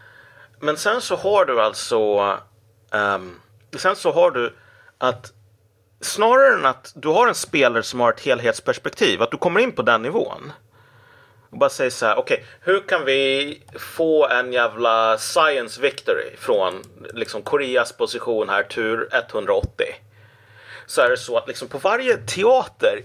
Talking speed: 160 wpm